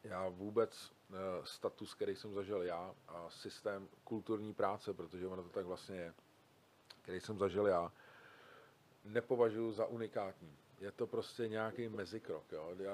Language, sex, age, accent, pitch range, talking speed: Czech, male, 40-59, native, 100-115 Hz, 145 wpm